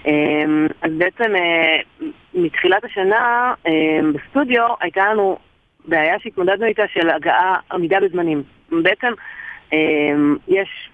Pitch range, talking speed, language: 160-245 Hz, 90 wpm, Hebrew